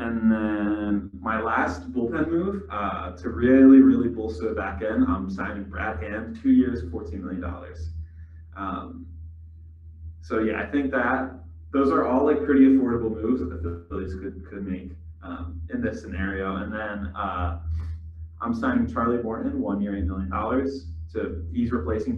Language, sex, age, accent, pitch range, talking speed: English, male, 20-39, American, 85-110 Hz, 165 wpm